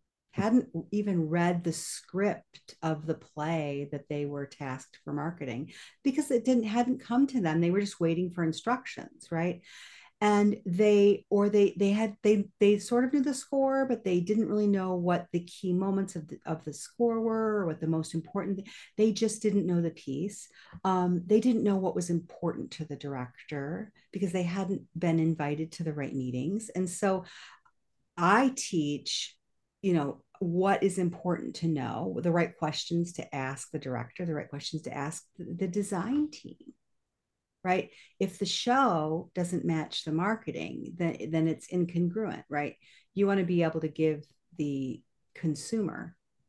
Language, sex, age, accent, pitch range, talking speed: English, female, 50-69, American, 155-200 Hz, 175 wpm